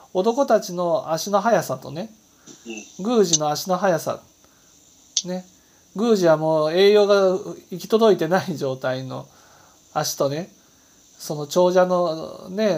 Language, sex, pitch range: Japanese, male, 140-195 Hz